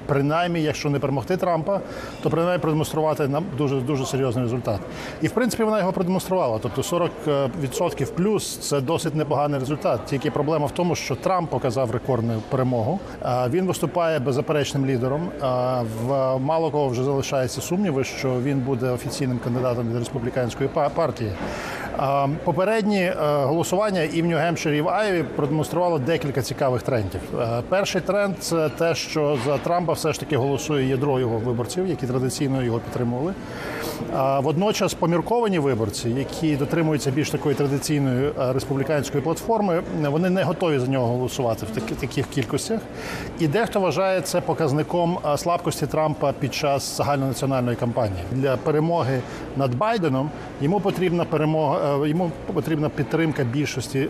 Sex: male